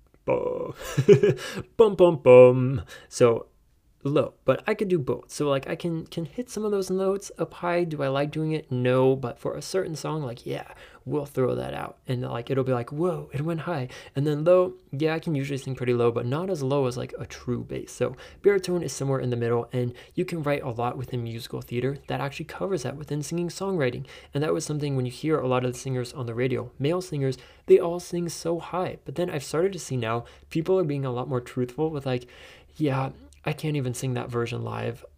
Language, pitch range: English, 125-165 Hz